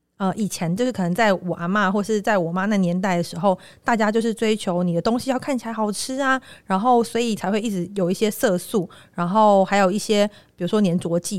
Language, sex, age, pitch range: Chinese, female, 30-49, 180-225 Hz